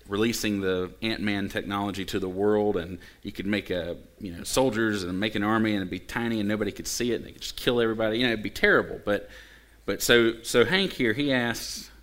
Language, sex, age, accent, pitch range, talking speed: English, male, 30-49, American, 90-110 Hz, 240 wpm